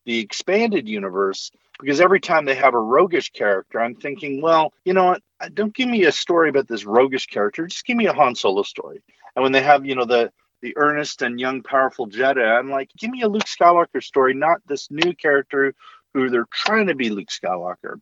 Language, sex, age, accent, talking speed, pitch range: English, male, 40-59, American, 215 wpm, 125-170 Hz